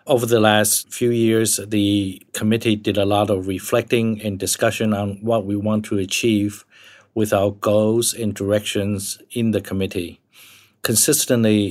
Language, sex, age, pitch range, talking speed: English, male, 50-69, 105-115 Hz, 150 wpm